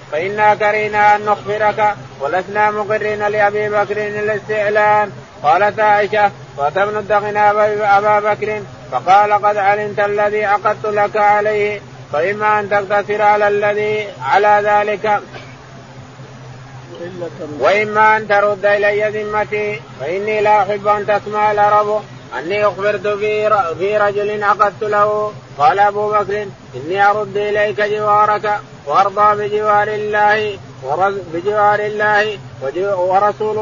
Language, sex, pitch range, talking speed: Arabic, male, 205-210 Hz, 105 wpm